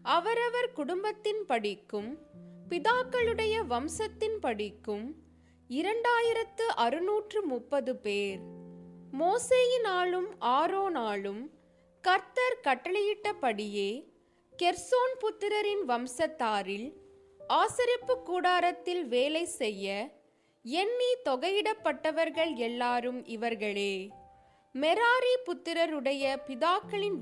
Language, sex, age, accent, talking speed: Tamil, female, 20-39, native, 60 wpm